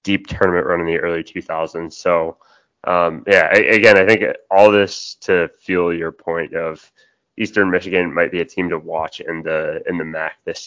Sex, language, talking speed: male, English, 195 wpm